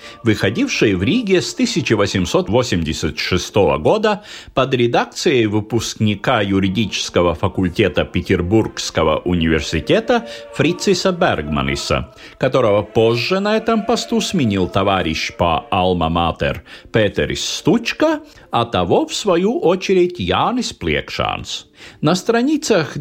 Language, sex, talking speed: Russian, male, 90 wpm